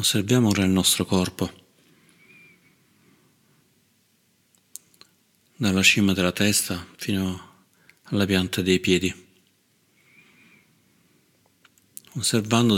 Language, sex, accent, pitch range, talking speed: Italian, male, native, 90-105 Hz, 70 wpm